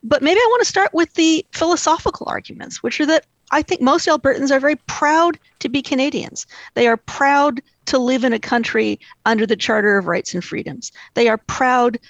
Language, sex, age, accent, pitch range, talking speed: English, female, 50-69, American, 215-280 Hz, 205 wpm